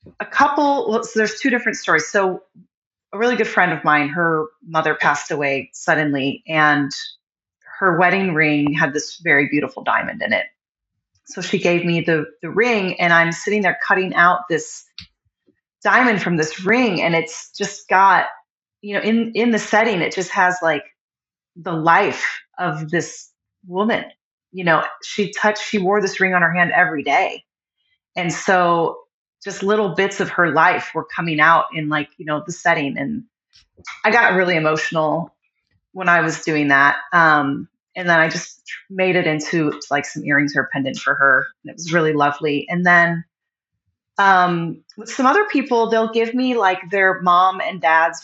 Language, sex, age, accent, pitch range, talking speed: English, female, 30-49, American, 160-210 Hz, 180 wpm